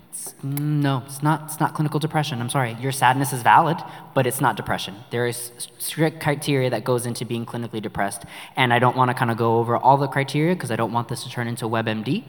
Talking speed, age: 240 wpm, 20-39